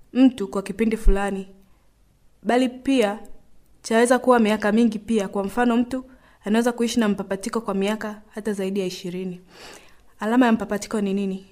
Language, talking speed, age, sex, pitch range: Swahili, 150 wpm, 20-39, female, 195-230 Hz